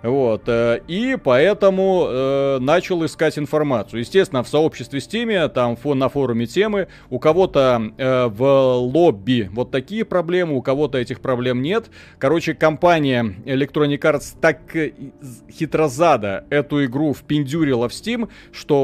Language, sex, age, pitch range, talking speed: Russian, male, 30-49, 125-170 Hz, 125 wpm